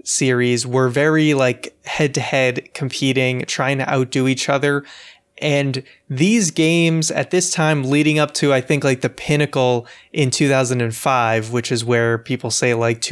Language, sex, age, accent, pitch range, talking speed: English, male, 20-39, American, 125-150 Hz, 150 wpm